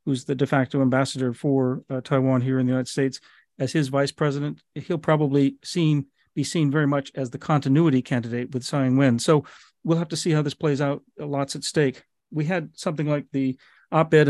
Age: 40-59